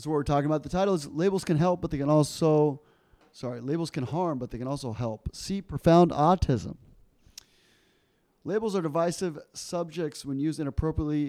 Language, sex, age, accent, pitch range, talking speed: English, male, 30-49, American, 125-150 Hz, 180 wpm